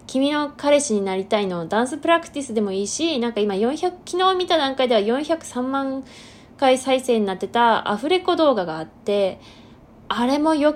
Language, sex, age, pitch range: Japanese, female, 20-39, 205-275 Hz